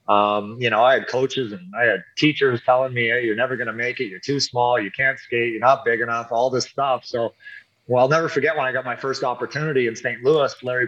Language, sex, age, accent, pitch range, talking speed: English, male, 30-49, American, 125-160 Hz, 255 wpm